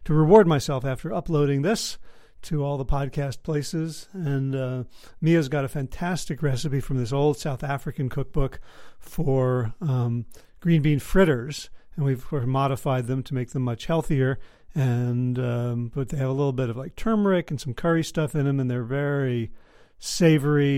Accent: American